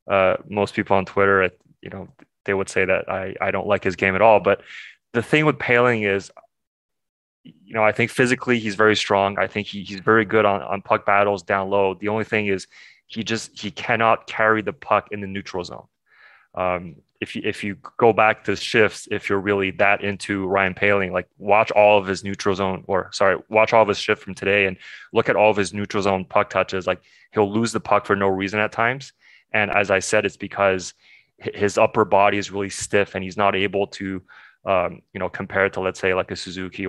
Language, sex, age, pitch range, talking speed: English, male, 20-39, 95-105 Hz, 225 wpm